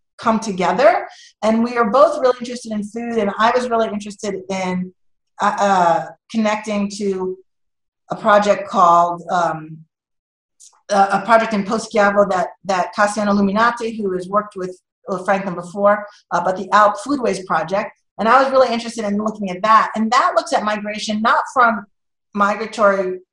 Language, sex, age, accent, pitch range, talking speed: English, female, 40-59, American, 180-225 Hz, 160 wpm